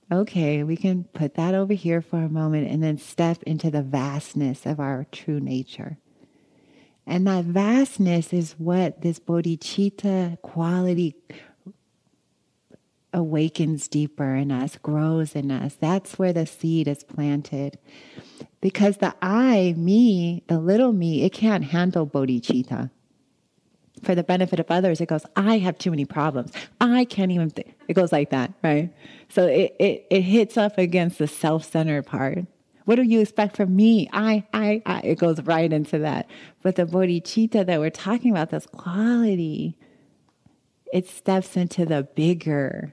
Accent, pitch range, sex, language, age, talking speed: American, 155-190 Hz, female, English, 30-49, 155 wpm